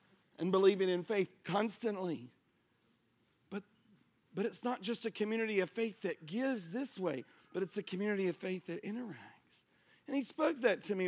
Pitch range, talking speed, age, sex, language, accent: 180-230 Hz, 175 wpm, 40-59, male, English, American